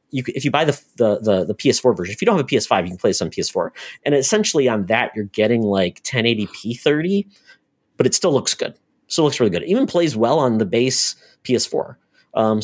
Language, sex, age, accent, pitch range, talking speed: English, male, 40-59, American, 105-130 Hz, 235 wpm